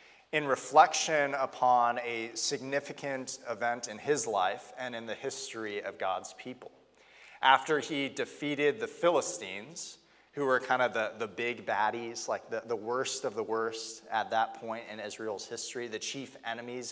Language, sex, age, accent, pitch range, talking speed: English, male, 30-49, American, 115-155 Hz, 160 wpm